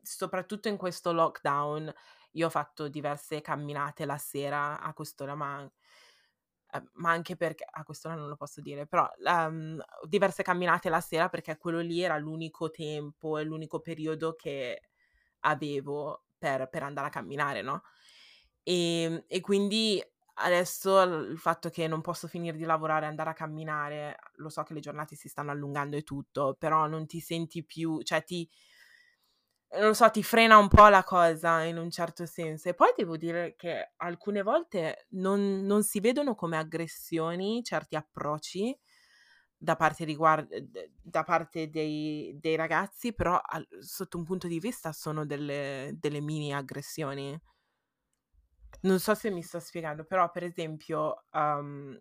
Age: 20-39